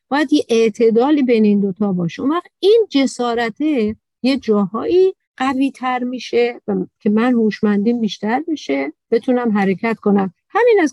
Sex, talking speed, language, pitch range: female, 130 wpm, Persian, 210-255 Hz